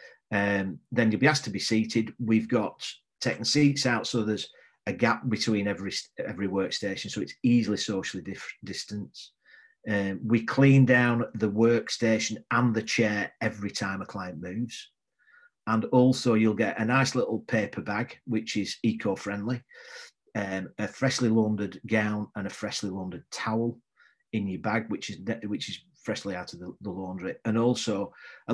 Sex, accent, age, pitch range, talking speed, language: male, British, 40-59, 105-120 Hz, 170 wpm, English